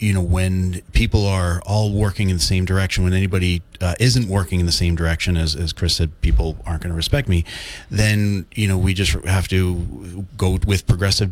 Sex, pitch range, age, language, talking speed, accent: male, 85-100 Hz, 30-49, English, 210 wpm, American